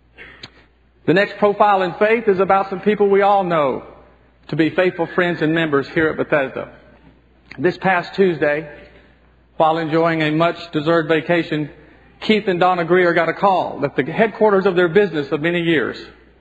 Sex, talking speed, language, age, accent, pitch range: male, 165 wpm, English, 50-69, American, 135-185 Hz